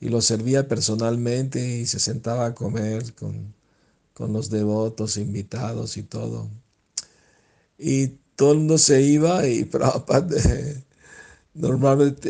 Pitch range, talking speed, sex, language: 115-140 Hz, 120 wpm, male, Spanish